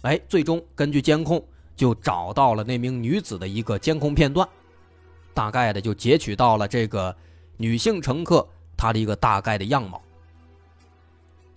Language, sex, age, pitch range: Chinese, male, 20-39, 105-155 Hz